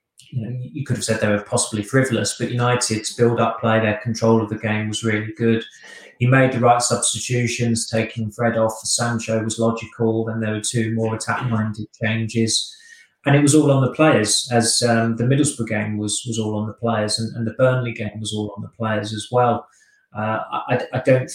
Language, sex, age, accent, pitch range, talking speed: English, male, 20-39, British, 110-120 Hz, 210 wpm